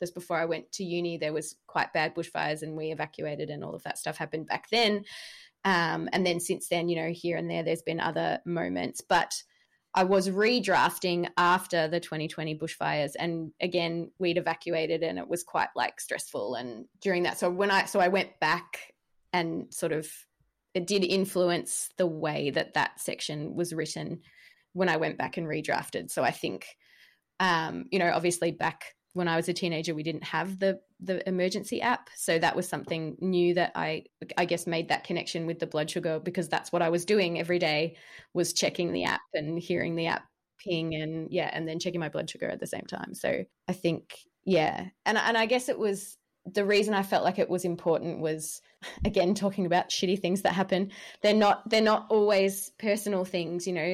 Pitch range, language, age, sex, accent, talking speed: 165-190 Hz, English, 20-39, female, Australian, 205 wpm